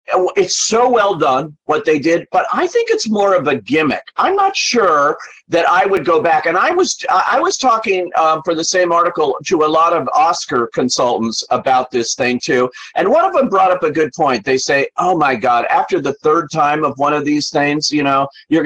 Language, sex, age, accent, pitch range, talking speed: English, male, 40-59, American, 125-185 Hz, 225 wpm